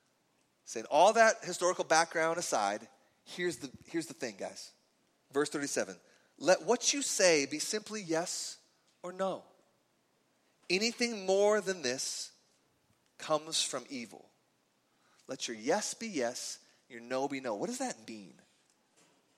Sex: male